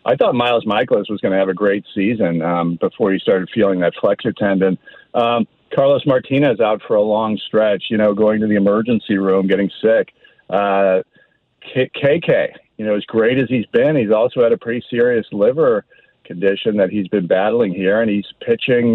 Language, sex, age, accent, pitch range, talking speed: English, male, 50-69, American, 105-145 Hz, 195 wpm